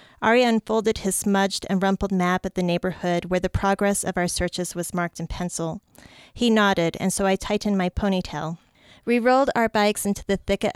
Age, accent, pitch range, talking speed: 30-49, American, 180-205 Hz, 195 wpm